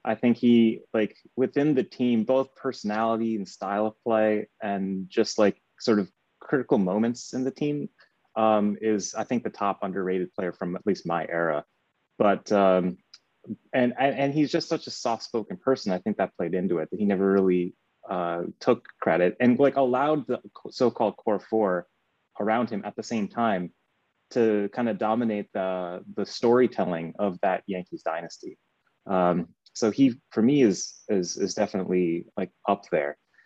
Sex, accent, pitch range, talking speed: male, American, 95-120 Hz, 175 wpm